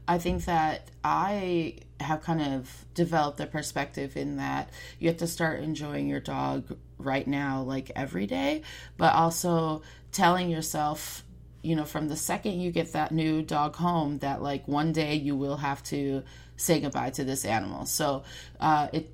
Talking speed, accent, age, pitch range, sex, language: 170 wpm, American, 30-49, 140-160 Hz, female, English